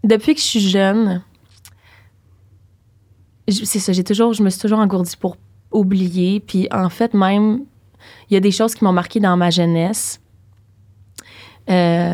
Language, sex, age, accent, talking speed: English, female, 20-39, Canadian, 165 wpm